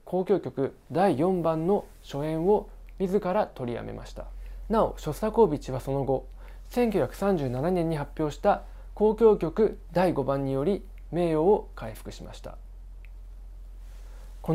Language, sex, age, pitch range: Japanese, male, 20-39, 130-195 Hz